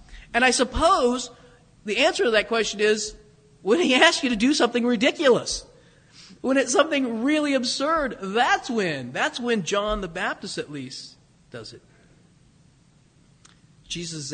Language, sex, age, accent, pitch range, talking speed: English, male, 40-59, American, 145-210 Hz, 140 wpm